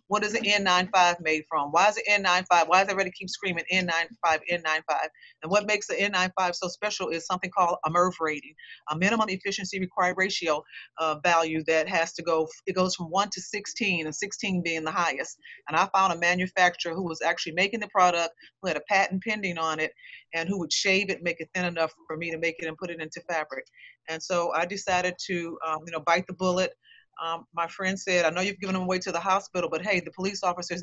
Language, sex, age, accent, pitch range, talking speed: English, female, 40-59, American, 160-185 Hz, 230 wpm